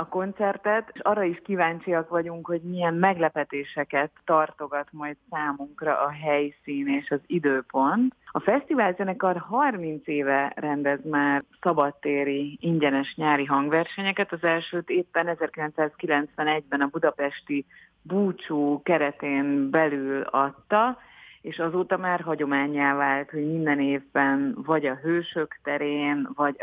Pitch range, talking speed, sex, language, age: 145-175 Hz, 115 wpm, female, Hungarian, 30-49